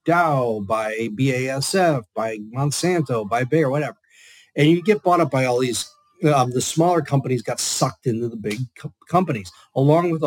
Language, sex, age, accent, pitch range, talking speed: English, male, 40-59, American, 120-155 Hz, 165 wpm